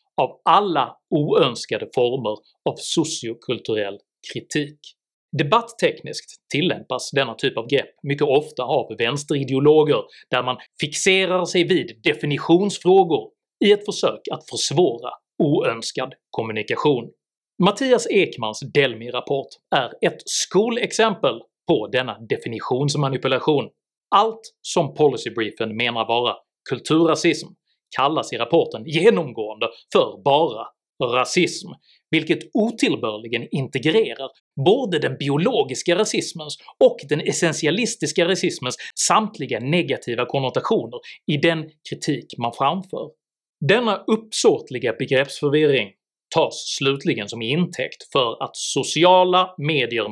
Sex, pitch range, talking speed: male, 135-195 Hz, 100 wpm